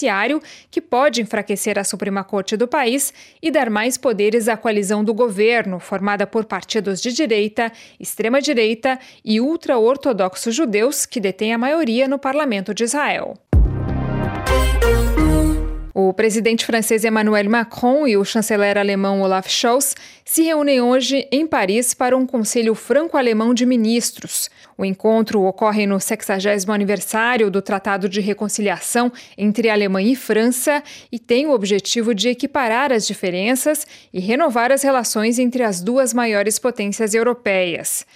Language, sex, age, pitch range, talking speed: Portuguese, female, 20-39, 205-265 Hz, 140 wpm